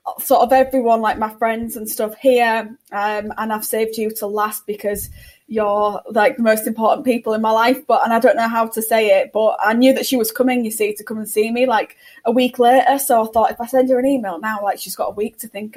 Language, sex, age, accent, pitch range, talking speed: English, female, 10-29, British, 220-250 Hz, 265 wpm